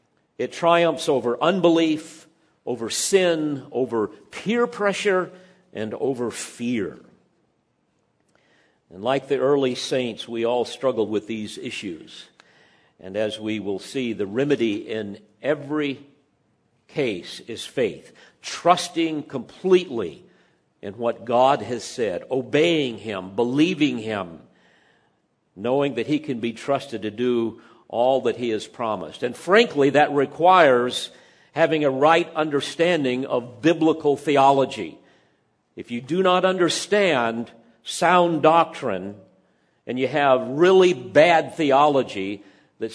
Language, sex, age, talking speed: English, male, 50-69, 115 wpm